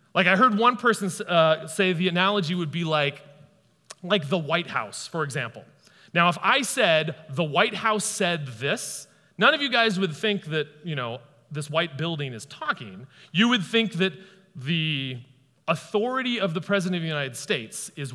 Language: English